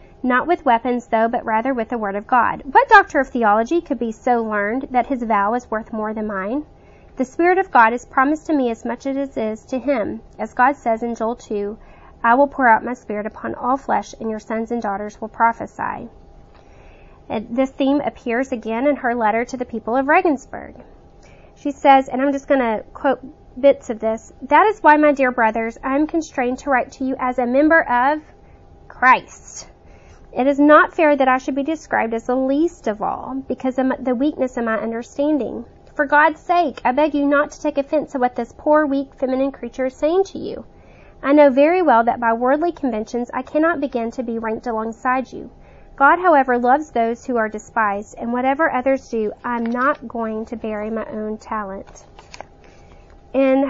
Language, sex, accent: English, female, American